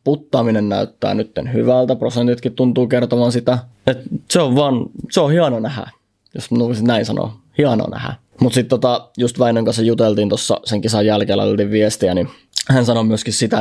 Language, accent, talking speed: Finnish, native, 170 wpm